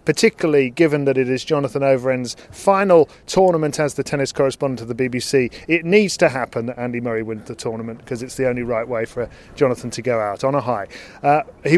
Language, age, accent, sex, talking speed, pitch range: English, 40-59, British, male, 215 wpm, 130-160 Hz